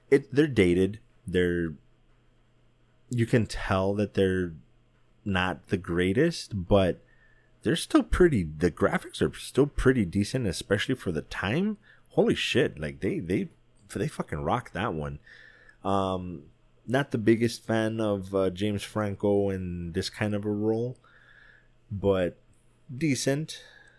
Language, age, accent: English, 20-39, American